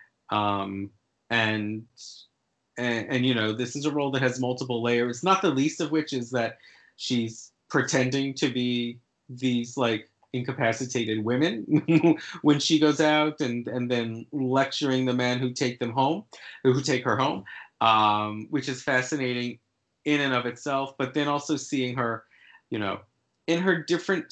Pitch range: 120-150 Hz